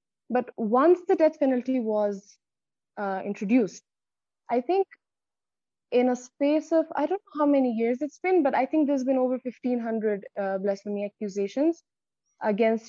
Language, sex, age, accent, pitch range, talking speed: English, female, 20-39, Indian, 200-260 Hz, 150 wpm